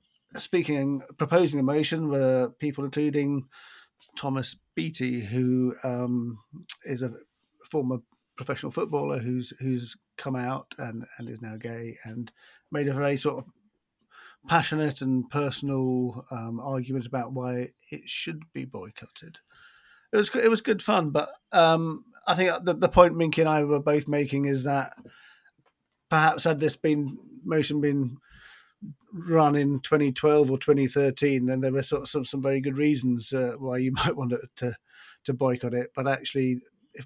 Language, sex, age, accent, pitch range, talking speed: English, male, 40-59, British, 125-145 Hz, 160 wpm